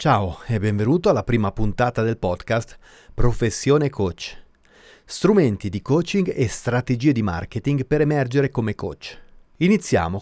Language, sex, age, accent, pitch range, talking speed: Italian, male, 30-49, native, 100-145 Hz, 130 wpm